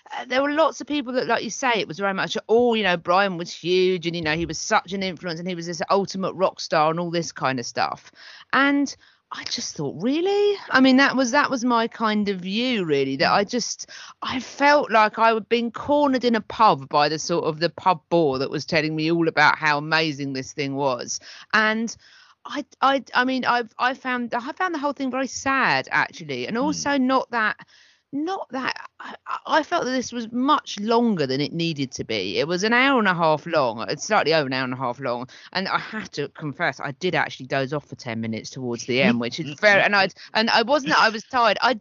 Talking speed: 240 wpm